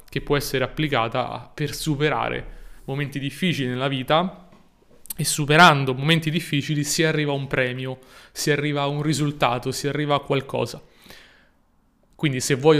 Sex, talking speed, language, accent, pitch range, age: male, 145 wpm, Italian, native, 130-150 Hz, 20-39